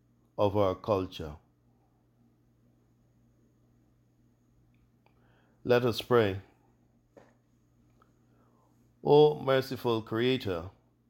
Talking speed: 55 wpm